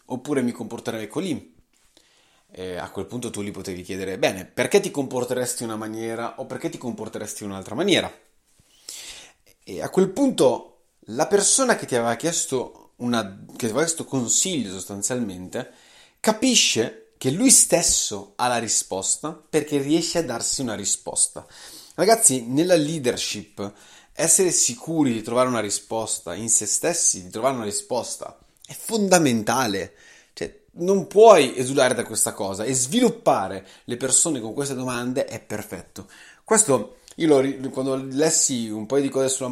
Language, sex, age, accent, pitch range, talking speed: Italian, male, 30-49, native, 110-155 Hz, 150 wpm